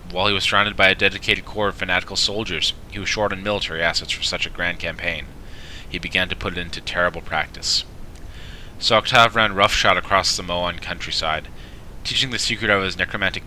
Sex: male